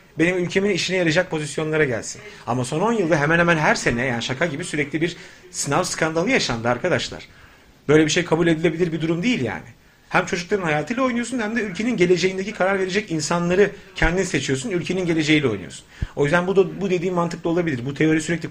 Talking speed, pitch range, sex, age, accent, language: 190 wpm, 150-190 Hz, male, 40-59, native, Turkish